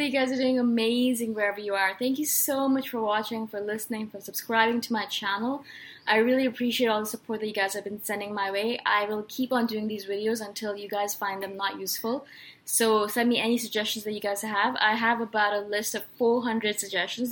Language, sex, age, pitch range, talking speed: English, female, 20-39, 205-255 Hz, 230 wpm